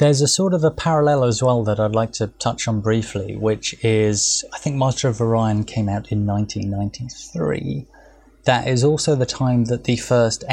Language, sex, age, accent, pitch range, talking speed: English, male, 20-39, British, 105-125 Hz, 195 wpm